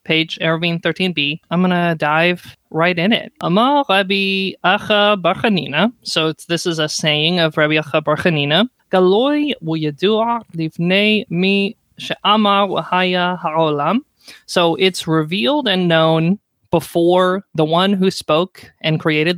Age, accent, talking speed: 20-39, American, 120 wpm